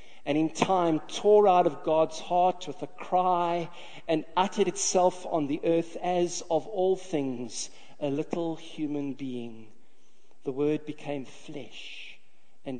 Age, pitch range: 40-59, 140-185 Hz